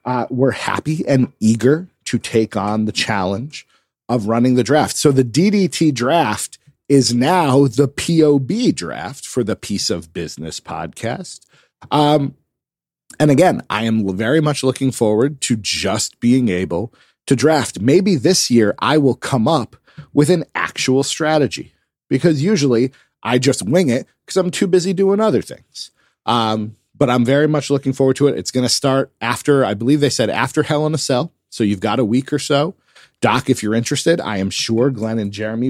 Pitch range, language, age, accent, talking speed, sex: 115-155 Hz, English, 40-59, American, 180 wpm, male